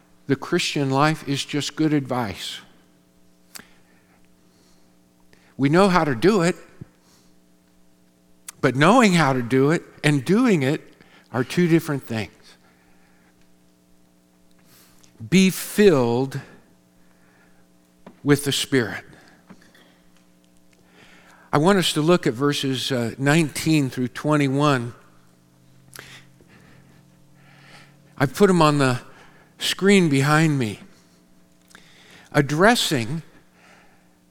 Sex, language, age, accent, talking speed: male, English, 50-69, American, 85 wpm